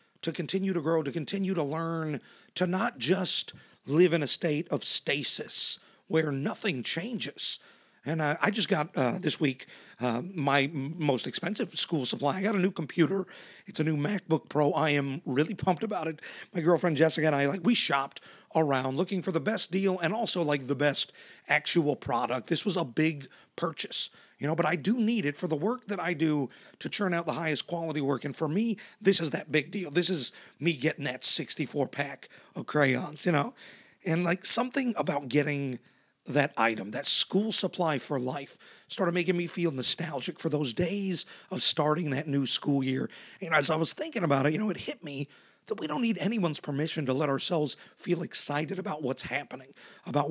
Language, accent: English, American